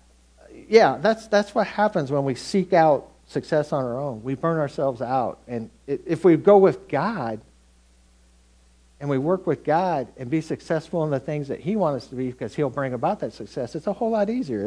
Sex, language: male, English